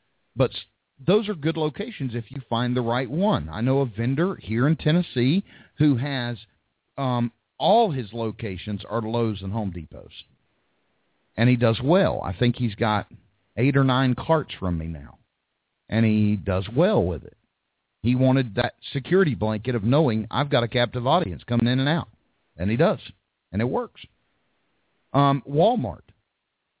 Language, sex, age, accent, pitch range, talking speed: English, male, 50-69, American, 105-135 Hz, 165 wpm